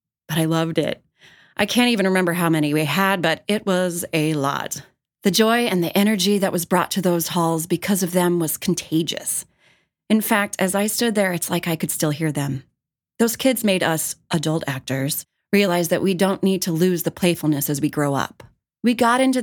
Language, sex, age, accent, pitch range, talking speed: English, female, 30-49, American, 155-200 Hz, 210 wpm